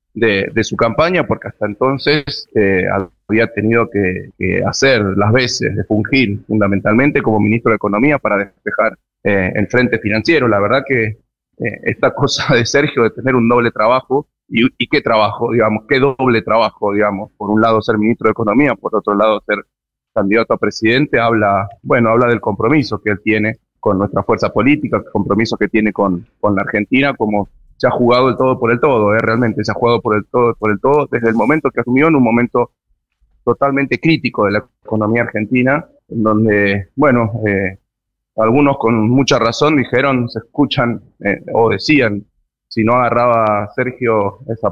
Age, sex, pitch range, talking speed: 30-49, male, 105-125 Hz, 180 wpm